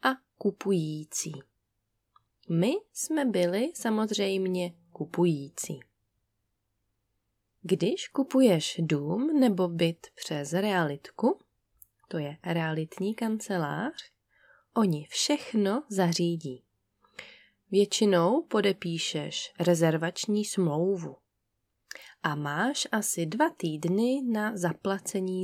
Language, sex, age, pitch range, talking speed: Czech, female, 20-39, 155-225 Hz, 75 wpm